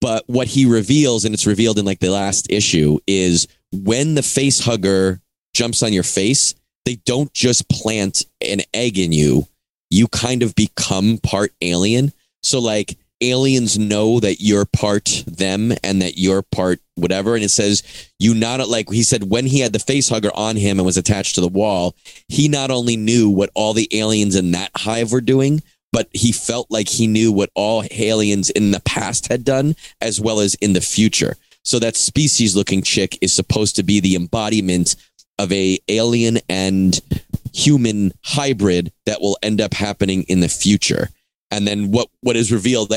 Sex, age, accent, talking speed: male, 30-49, American, 185 wpm